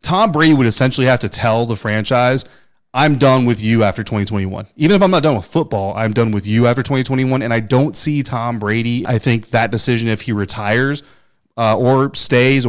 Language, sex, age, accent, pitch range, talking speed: English, male, 30-49, American, 105-135 Hz, 210 wpm